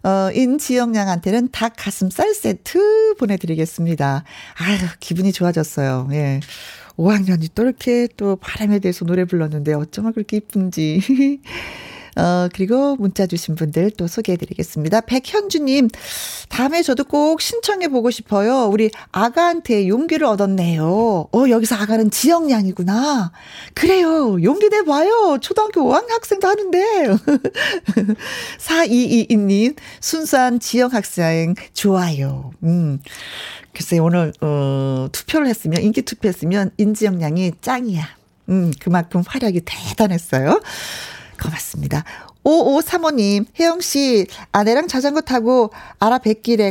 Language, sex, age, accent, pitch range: Korean, female, 40-59, native, 180-265 Hz